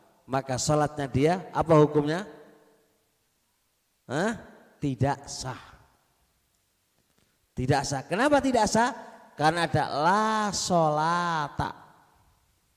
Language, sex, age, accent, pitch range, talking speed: Indonesian, male, 30-49, native, 150-225 Hz, 80 wpm